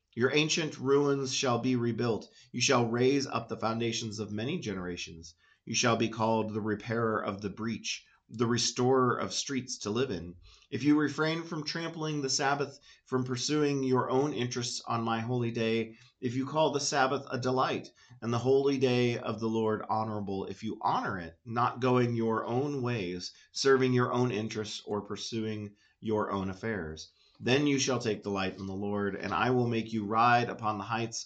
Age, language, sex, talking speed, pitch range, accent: 30-49, English, male, 190 wpm, 100-130 Hz, American